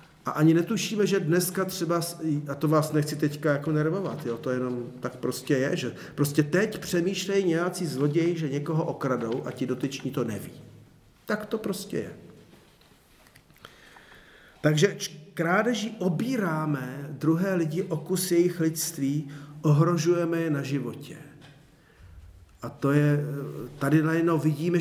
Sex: male